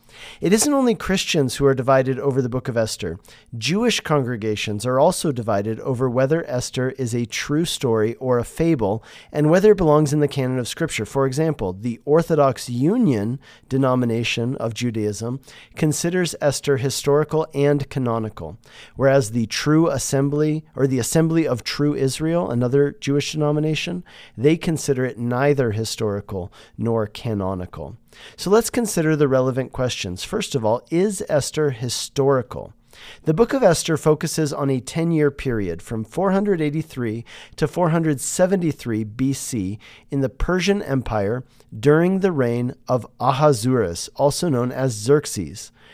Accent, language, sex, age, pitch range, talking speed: American, English, male, 40-59, 120-155 Hz, 140 wpm